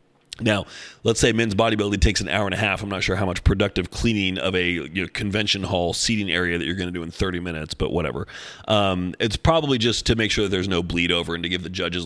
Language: English